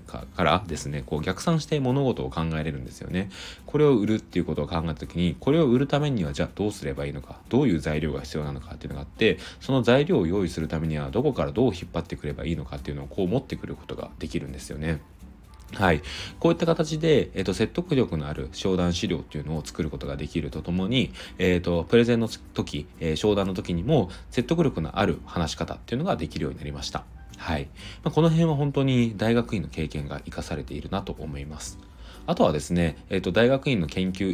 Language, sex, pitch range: Japanese, male, 75-110 Hz